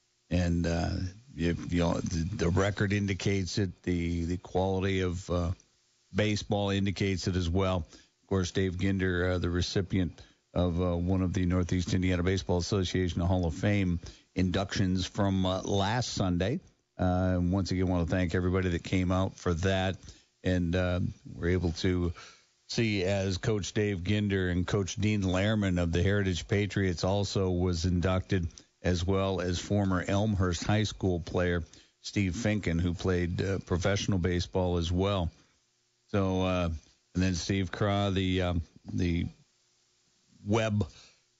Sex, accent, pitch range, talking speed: male, American, 90-100 Hz, 150 wpm